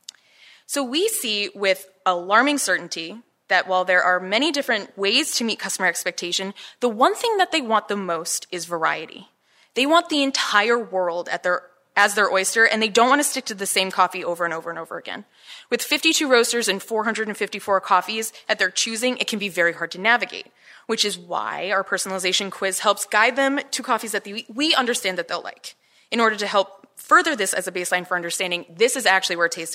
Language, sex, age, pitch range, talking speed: English, female, 20-39, 180-245 Hz, 210 wpm